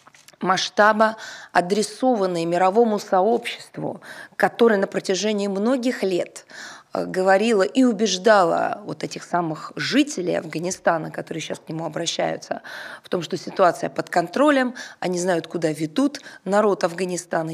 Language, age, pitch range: Russian, 20-39, 170-225 Hz